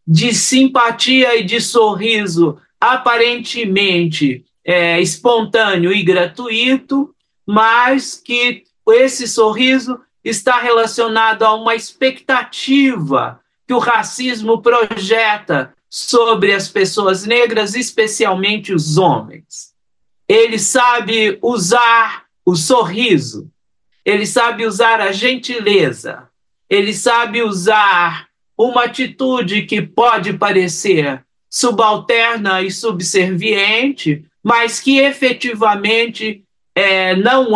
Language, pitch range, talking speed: Portuguese, 195-240 Hz, 85 wpm